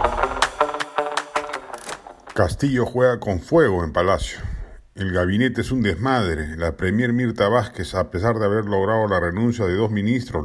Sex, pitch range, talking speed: male, 95-125 Hz, 145 wpm